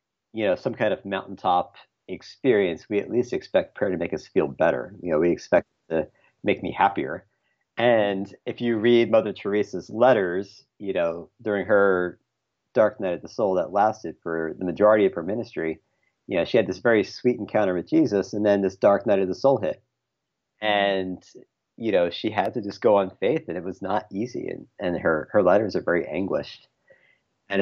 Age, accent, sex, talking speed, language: 40-59, American, male, 200 wpm, English